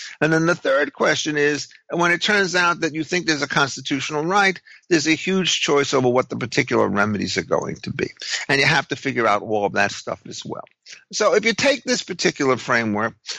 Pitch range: 125-160 Hz